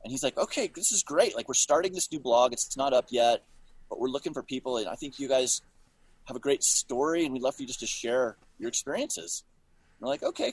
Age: 30-49